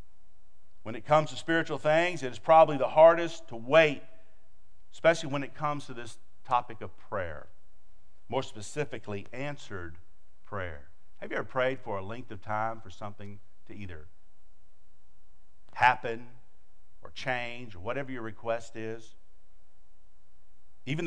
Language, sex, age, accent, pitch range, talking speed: English, male, 50-69, American, 95-135 Hz, 135 wpm